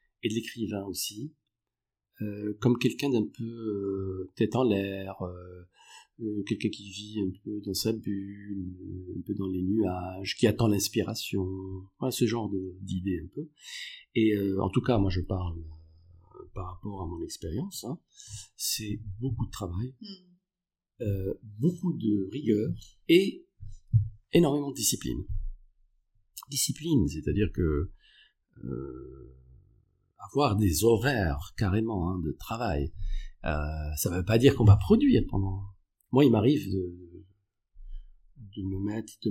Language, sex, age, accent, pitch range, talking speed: French, male, 50-69, French, 95-115 Hz, 140 wpm